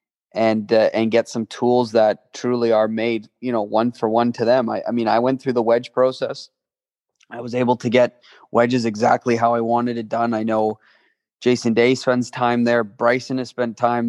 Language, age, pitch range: English, 20-39, 110-125 Hz